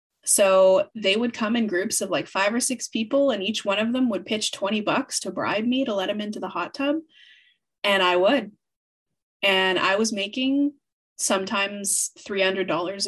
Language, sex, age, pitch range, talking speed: English, female, 20-39, 190-275 Hz, 185 wpm